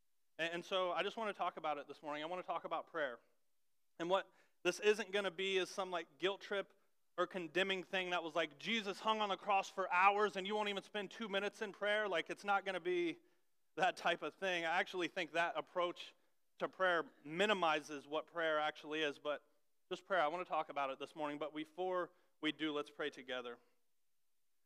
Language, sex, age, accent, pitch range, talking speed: English, male, 30-49, American, 135-180 Hz, 220 wpm